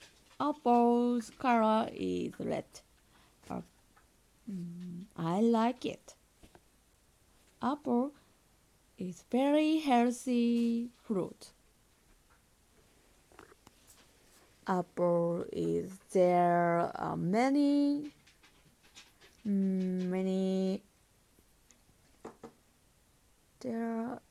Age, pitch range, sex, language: 20-39, 185-250 Hz, female, Japanese